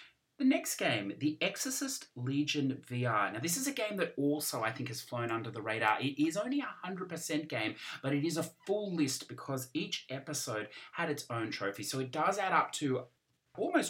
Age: 30-49